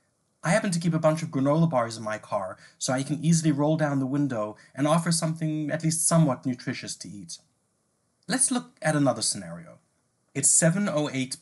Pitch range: 130-170 Hz